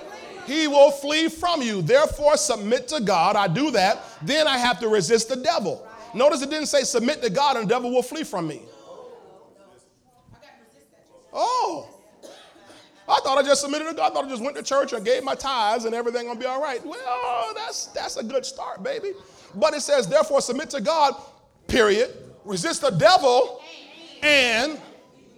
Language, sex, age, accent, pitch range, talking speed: English, male, 40-59, American, 195-290 Hz, 185 wpm